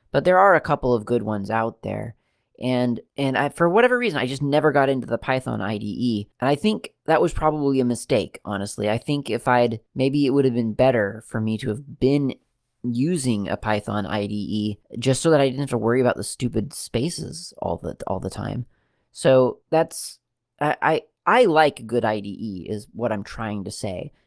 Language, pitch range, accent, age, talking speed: English, 110-140 Hz, American, 30-49, 205 wpm